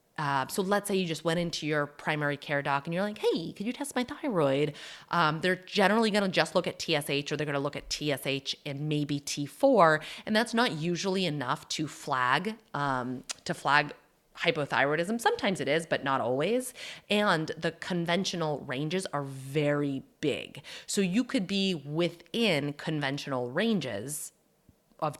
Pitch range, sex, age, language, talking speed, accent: 140-175 Hz, female, 30-49, English, 170 wpm, American